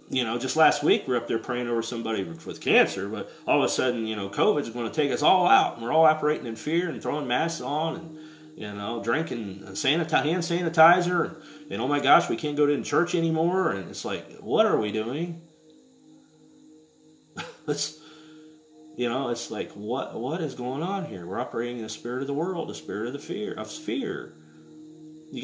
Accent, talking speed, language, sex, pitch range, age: American, 210 wpm, English, male, 120-160 Hz, 40-59